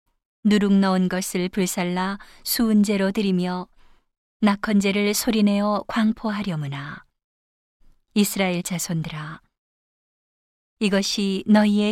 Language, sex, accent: Korean, female, native